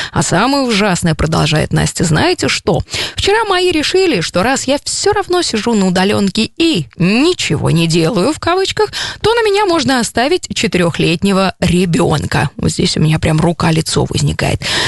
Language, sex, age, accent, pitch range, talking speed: Russian, female, 20-39, native, 165-240 Hz, 155 wpm